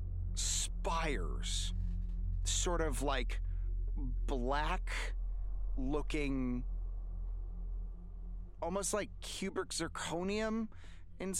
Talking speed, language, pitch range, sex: 60 wpm, English, 90-130 Hz, male